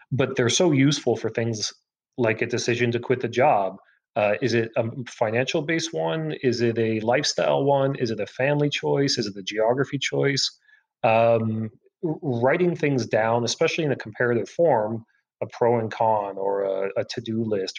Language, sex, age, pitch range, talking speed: English, male, 30-49, 115-150 Hz, 180 wpm